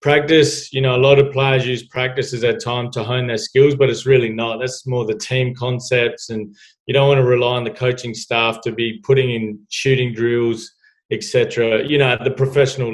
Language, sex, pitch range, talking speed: English, male, 115-130 Hz, 220 wpm